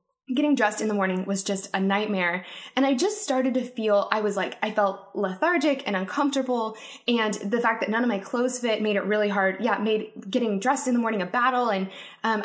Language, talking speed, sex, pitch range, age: English, 225 wpm, female, 200-250 Hz, 10-29